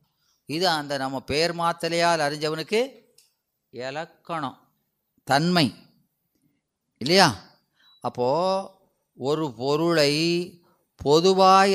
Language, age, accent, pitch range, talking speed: Tamil, 30-49, native, 145-185 Hz, 65 wpm